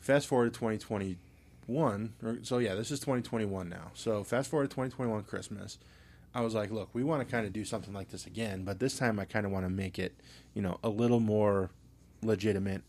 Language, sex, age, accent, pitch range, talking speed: English, male, 20-39, American, 95-110 Hz, 215 wpm